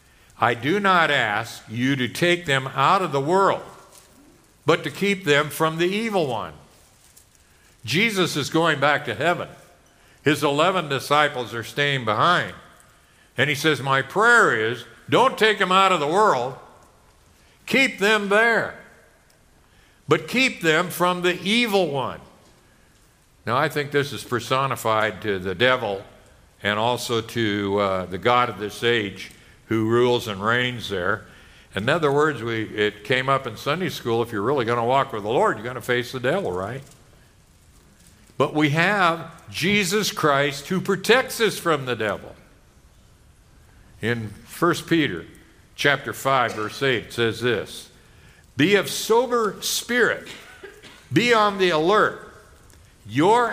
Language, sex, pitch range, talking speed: English, male, 115-180 Hz, 150 wpm